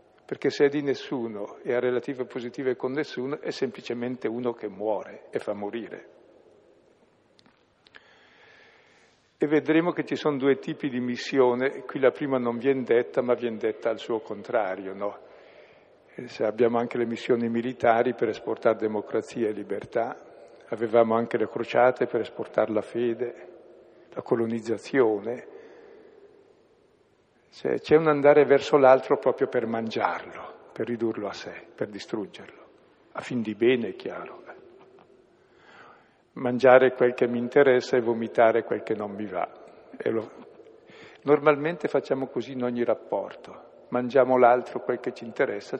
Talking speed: 140 wpm